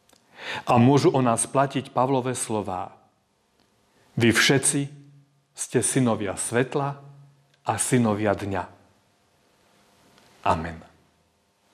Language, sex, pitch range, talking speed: Slovak, male, 100-125 Hz, 80 wpm